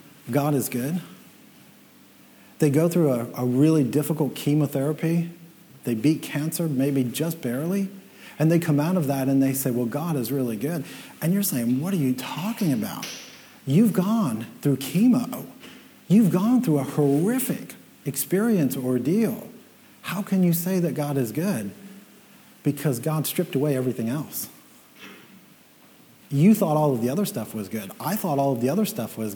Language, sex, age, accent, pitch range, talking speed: English, male, 40-59, American, 135-180 Hz, 165 wpm